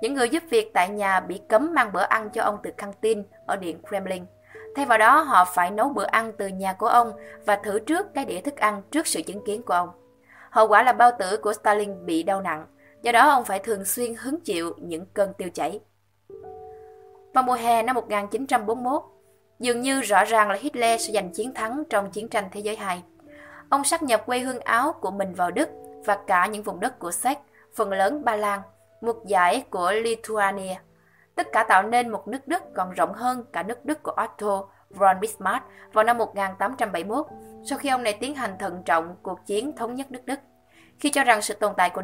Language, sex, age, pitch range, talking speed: Vietnamese, female, 20-39, 195-250 Hz, 220 wpm